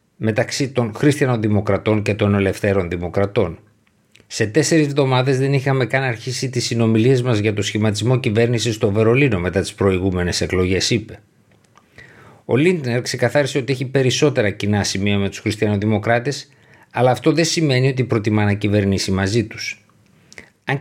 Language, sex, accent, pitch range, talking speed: Greek, male, native, 105-130 Hz, 145 wpm